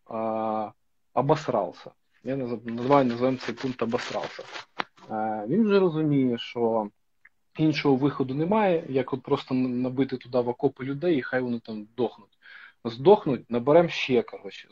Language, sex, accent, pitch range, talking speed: Ukrainian, male, native, 115-145 Hz, 125 wpm